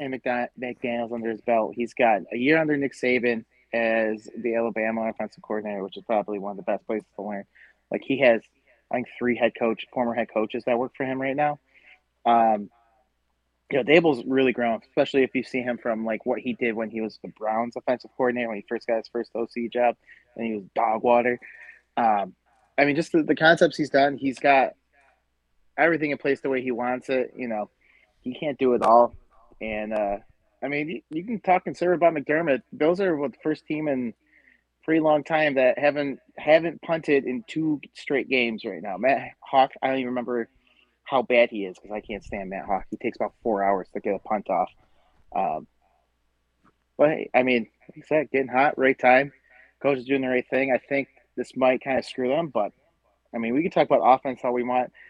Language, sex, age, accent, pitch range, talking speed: English, male, 20-39, American, 115-140 Hz, 220 wpm